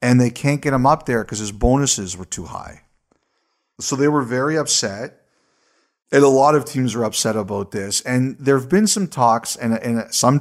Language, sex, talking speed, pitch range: English, male, 210 wpm, 110-130 Hz